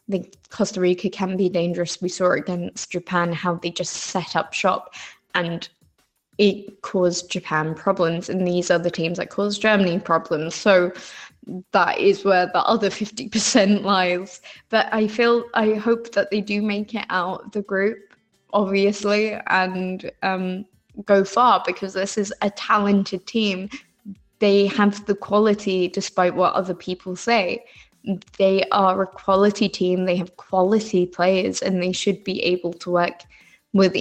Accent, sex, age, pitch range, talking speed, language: British, female, 10-29, 185-205 Hz, 155 wpm, English